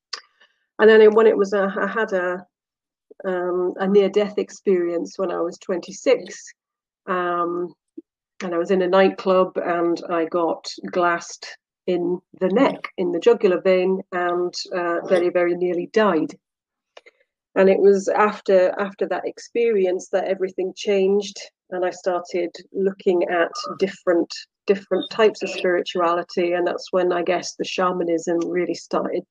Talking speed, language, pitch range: 145 wpm, English, 175-205 Hz